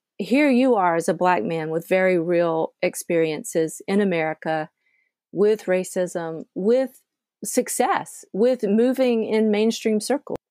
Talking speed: 125 wpm